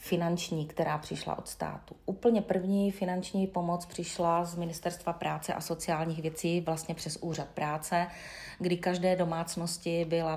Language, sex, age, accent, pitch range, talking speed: Czech, female, 30-49, native, 160-180 Hz, 140 wpm